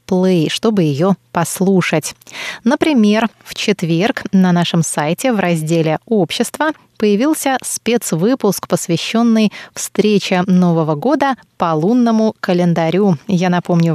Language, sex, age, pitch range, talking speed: Russian, female, 20-39, 170-220 Hz, 100 wpm